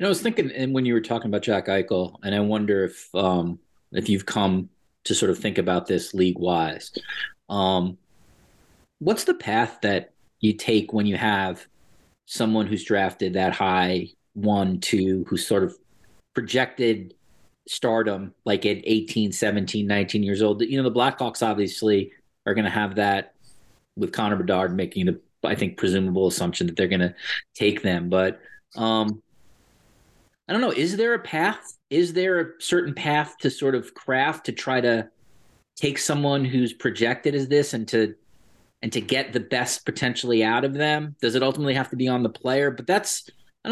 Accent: American